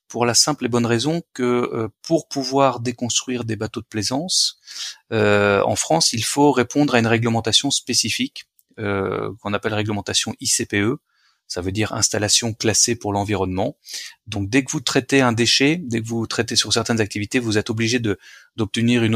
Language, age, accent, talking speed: French, 30-49, French, 170 wpm